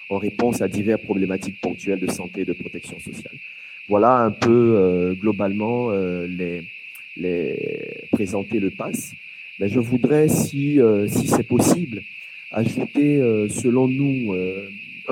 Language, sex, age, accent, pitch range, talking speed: French, male, 40-59, French, 100-130 Hz, 145 wpm